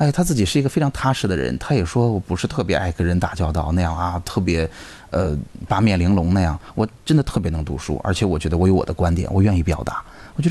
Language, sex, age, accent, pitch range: Chinese, male, 20-39, native, 90-140 Hz